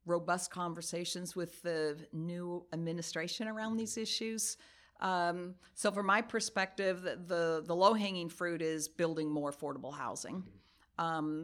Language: English